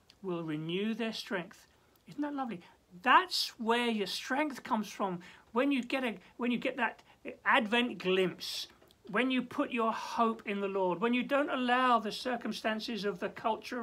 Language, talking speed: English, 175 wpm